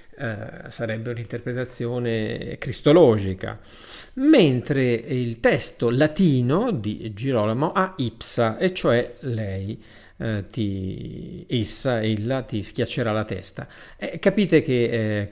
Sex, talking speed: male, 90 wpm